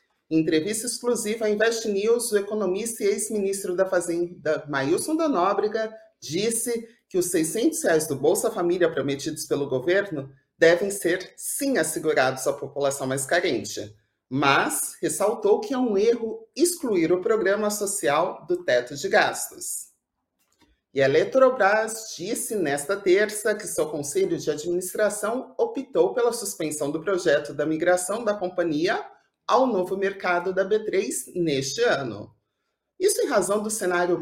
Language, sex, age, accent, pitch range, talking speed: Portuguese, male, 30-49, Brazilian, 170-225 Hz, 140 wpm